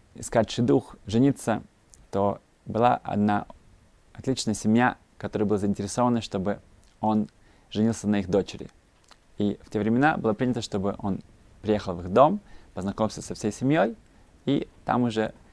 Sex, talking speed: male, 140 wpm